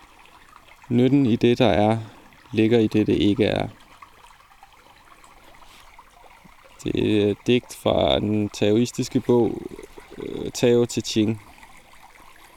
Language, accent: Danish, native